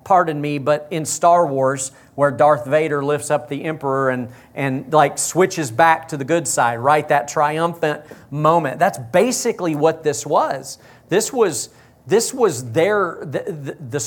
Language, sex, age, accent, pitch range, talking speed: English, male, 40-59, American, 130-170 Hz, 165 wpm